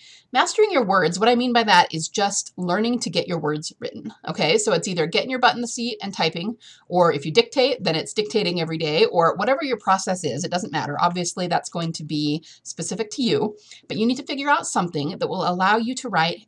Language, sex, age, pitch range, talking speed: English, female, 30-49, 175-230 Hz, 240 wpm